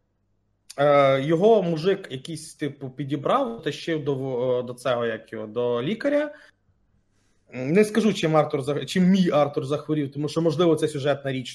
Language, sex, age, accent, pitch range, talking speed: Ukrainian, male, 30-49, native, 110-160 Hz, 150 wpm